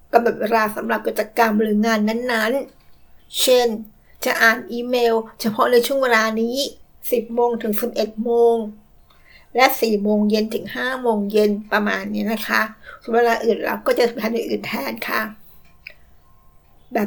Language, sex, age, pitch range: Thai, female, 60-79, 215-240 Hz